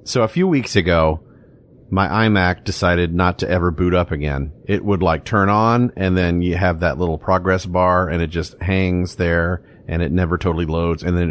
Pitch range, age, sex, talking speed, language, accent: 90-115 Hz, 40-59, male, 210 wpm, English, American